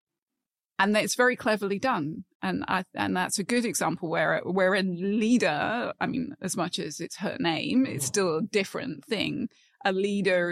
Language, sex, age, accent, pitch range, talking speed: English, female, 20-39, British, 175-235 Hz, 175 wpm